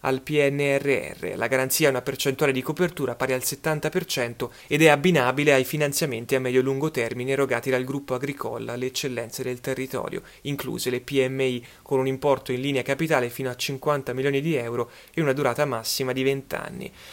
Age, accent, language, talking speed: 30-49, native, Italian, 180 wpm